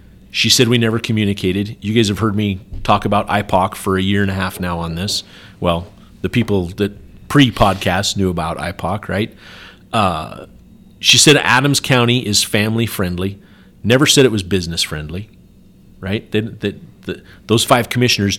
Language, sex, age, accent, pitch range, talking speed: English, male, 40-59, American, 95-120 Hz, 160 wpm